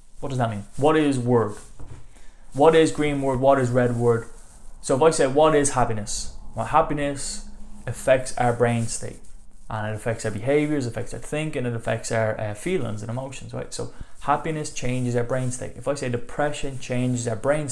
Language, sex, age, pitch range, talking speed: English, male, 20-39, 115-135 Hz, 195 wpm